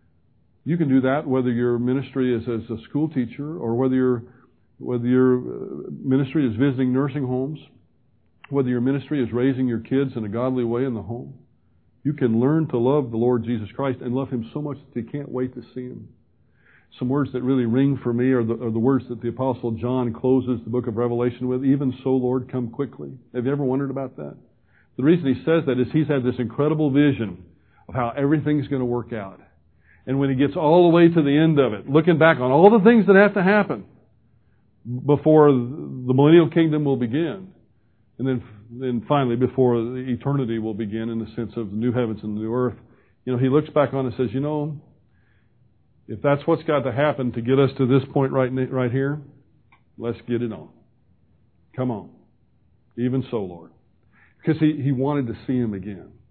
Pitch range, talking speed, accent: 120-140 Hz, 210 wpm, American